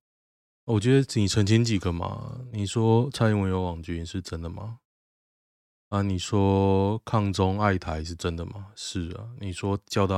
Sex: male